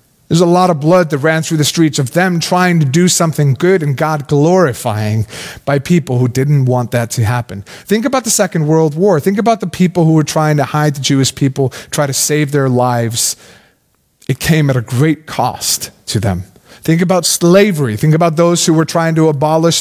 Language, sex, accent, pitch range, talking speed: English, male, American, 135-180 Hz, 210 wpm